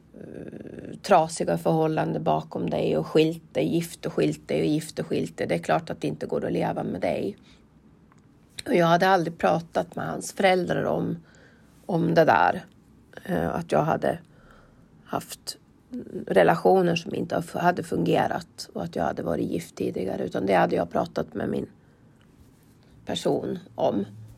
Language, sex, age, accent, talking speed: Swedish, female, 30-49, native, 150 wpm